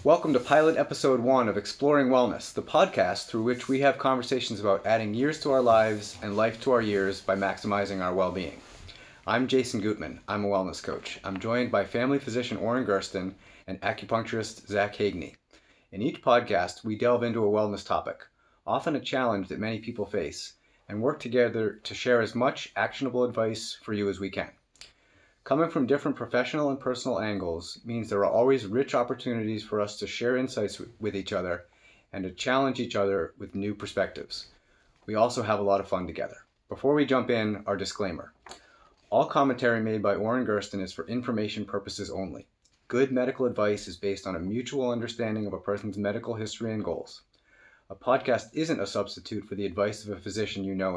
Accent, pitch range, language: American, 100-120 Hz, English